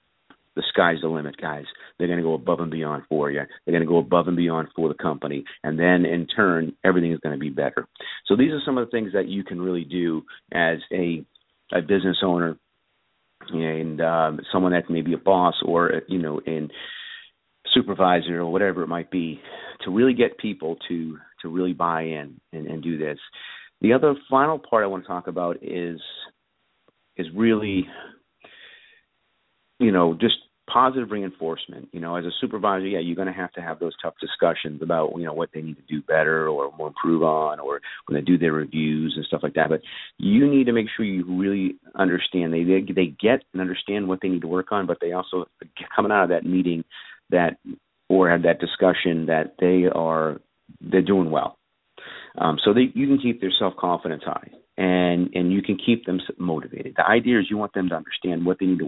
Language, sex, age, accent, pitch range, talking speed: English, male, 40-59, American, 80-95 Hz, 210 wpm